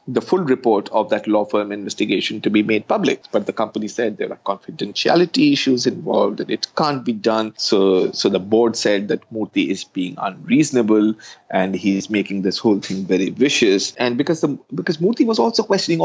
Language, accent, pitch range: English, Indian, 100-120 Hz